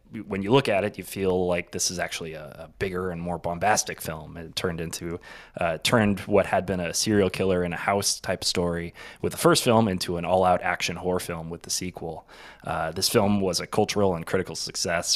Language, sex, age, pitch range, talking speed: English, male, 20-39, 85-105 Hz, 220 wpm